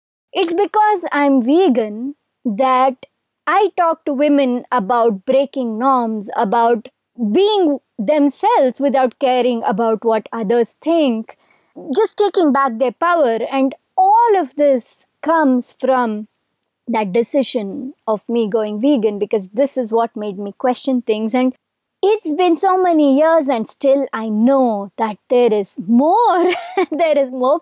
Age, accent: 20-39, Indian